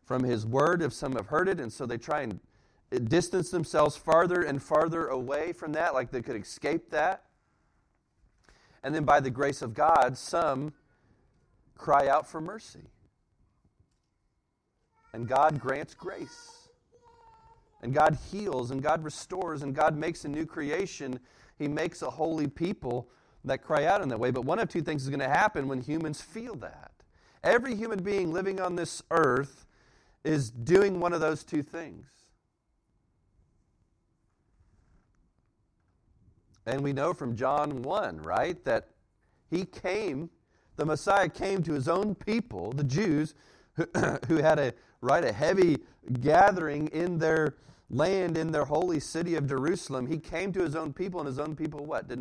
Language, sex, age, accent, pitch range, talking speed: English, male, 40-59, American, 135-170 Hz, 160 wpm